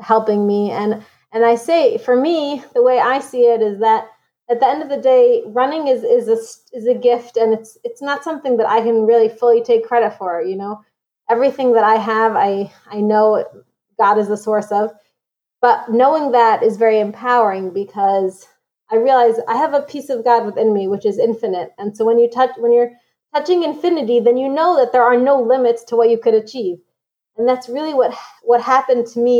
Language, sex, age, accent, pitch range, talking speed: English, female, 20-39, American, 220-265 Hz, 215 wpm